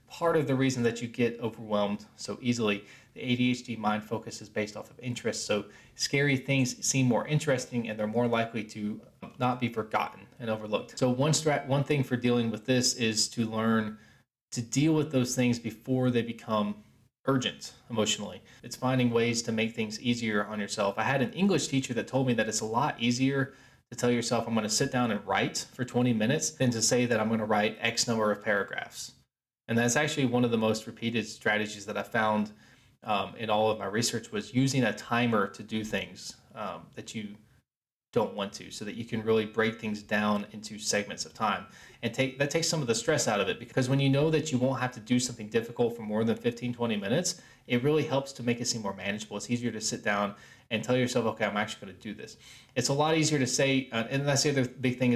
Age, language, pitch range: 20-39, English, 110-130 Hz